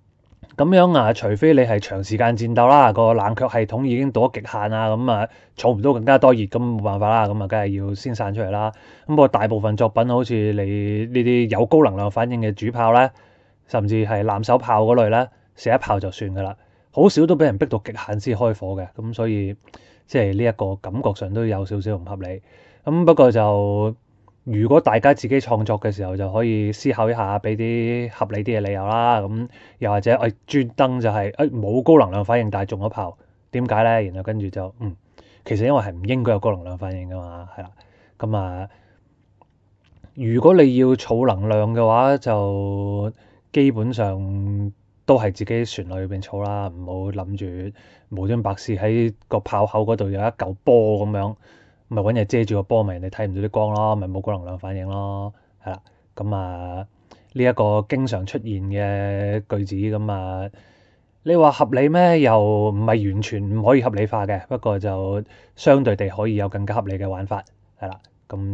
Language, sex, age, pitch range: Chinese, male, 20-39, 100-115 Hz